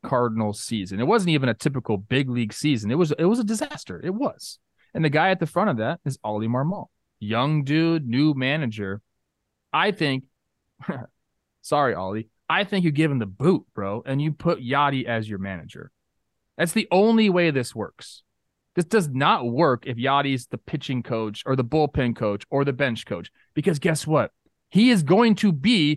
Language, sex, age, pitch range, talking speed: English, male, 30-49, 115-180 Hz, 190 wpm